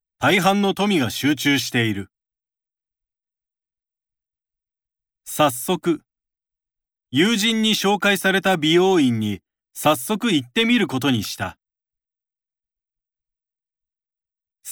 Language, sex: Japanese, male